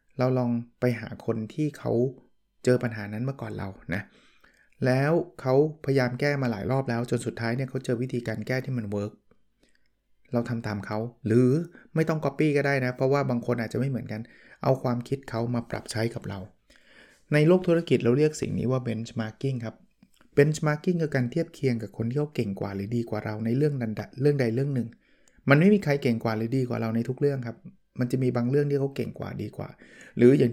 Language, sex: Thai, male